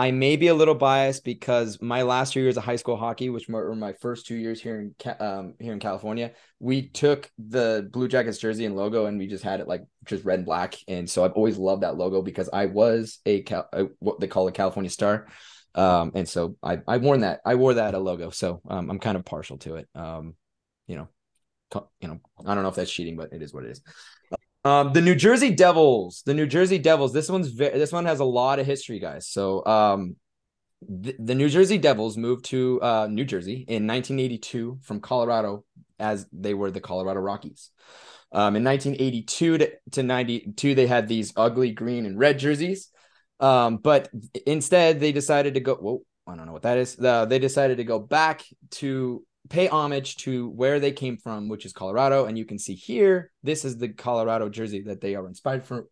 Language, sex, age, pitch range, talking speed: English, male, 20-39, 100-135 Hz, 215 wpm